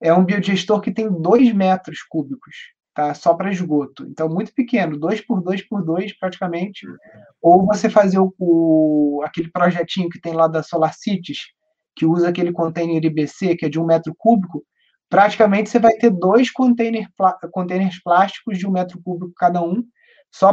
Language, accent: Portuguese, Brazilian